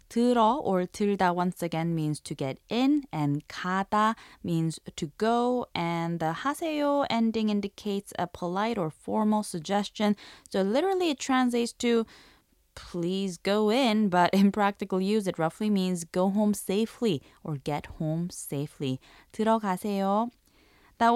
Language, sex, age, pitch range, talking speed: English, female, 20-39, 175-235 Hz, 135 wpm